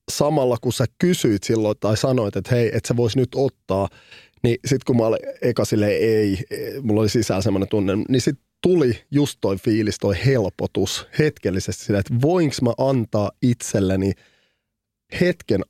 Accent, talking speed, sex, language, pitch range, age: native, 165 wpm, male, Finnish, 105-125 Hz, 30-49